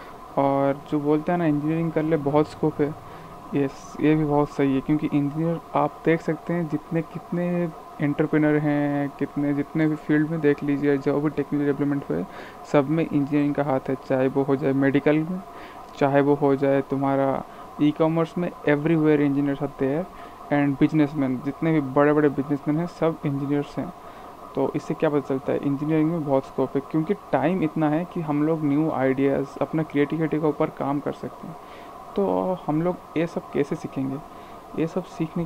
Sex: male